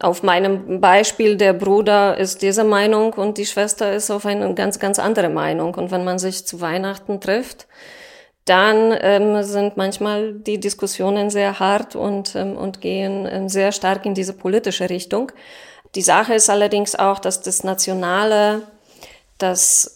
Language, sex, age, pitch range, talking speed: German, female, 20-39, 180-205 Hz, 160 wpm